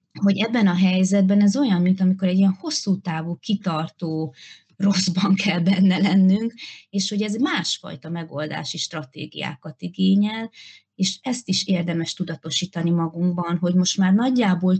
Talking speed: 140 wpm